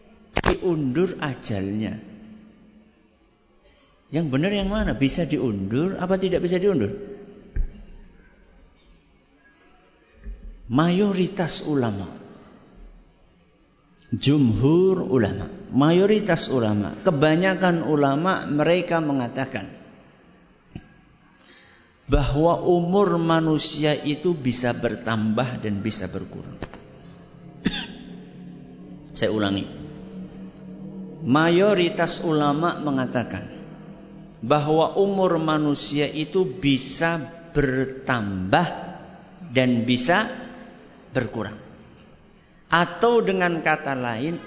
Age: 50-69